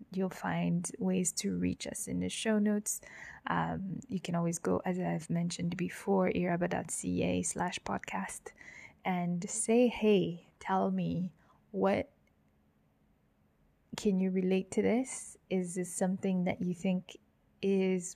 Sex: female